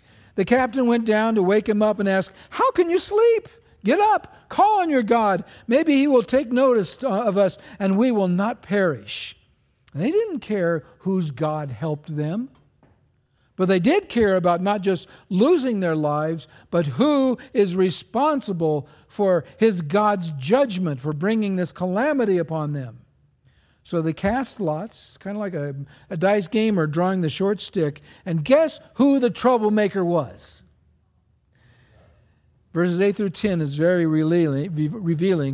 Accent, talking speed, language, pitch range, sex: American, 155 wpm, English, 155-250 Hz, male